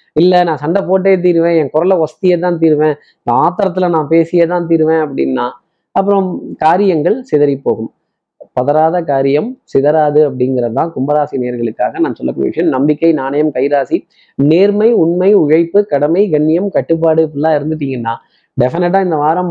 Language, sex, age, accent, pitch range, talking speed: Tamil, male, 20-39, native, 145-180 Hz, 135 wpm